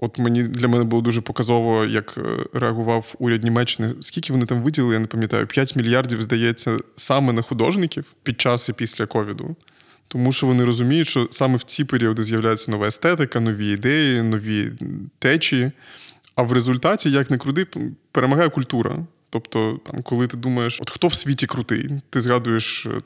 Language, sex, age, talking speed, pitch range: Ukrainian, male, 20-39, 170 wpm, 115-140 Hz